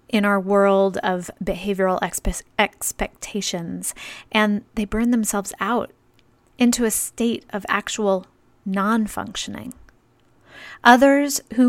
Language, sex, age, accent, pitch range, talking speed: English, female, 30-49, American, 195-245 Hz, 105 wpm